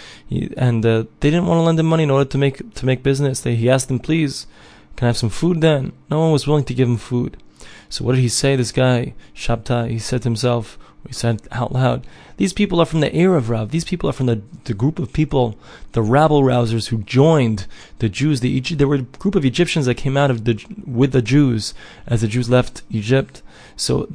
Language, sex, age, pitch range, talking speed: English, male, 20-39, 115-145 Hz, 240 wpm